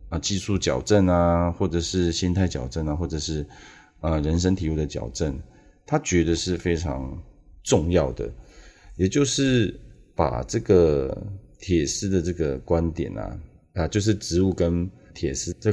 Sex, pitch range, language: male, 75-95 Hz, Chinese